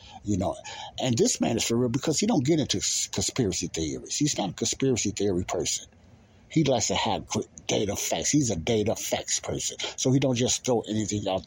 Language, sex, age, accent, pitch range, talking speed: English, male, 60-79, American, 105-135 Hz, 205 wpm